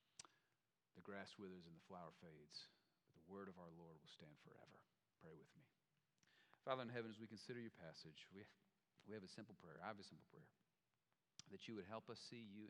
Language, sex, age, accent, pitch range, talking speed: English, male, 40-59, American, 100-145 Hz, 210 wpm